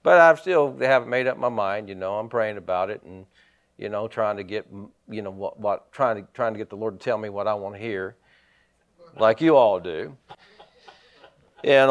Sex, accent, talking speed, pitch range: male, American, 225 wpm, 120-160 Hz